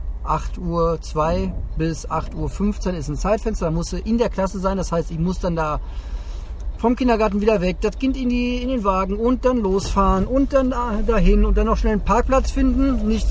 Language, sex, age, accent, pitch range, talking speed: German, male, 40-59, German, 150-220 Hz, 210 wpm